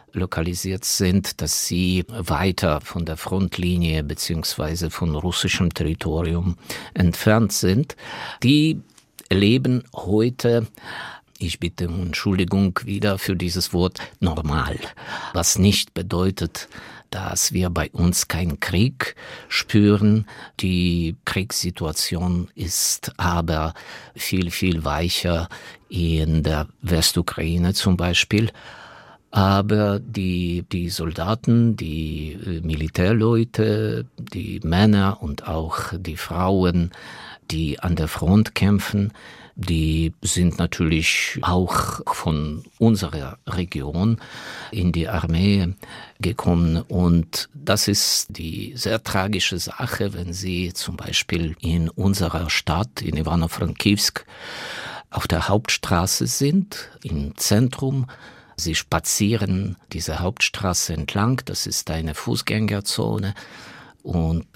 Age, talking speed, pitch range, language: 50-69, 100 wpm, 85-105 Hz, German